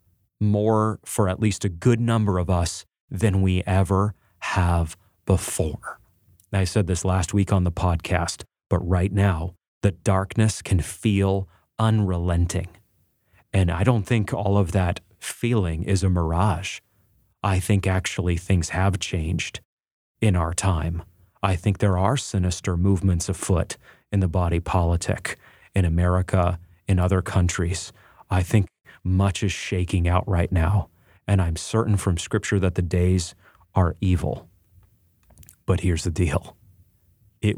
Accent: American